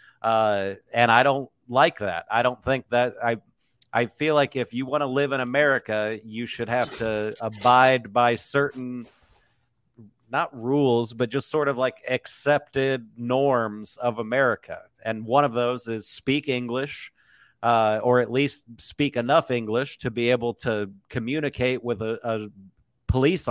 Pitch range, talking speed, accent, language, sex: 115-140 Hz, 160 wpm, American, English, male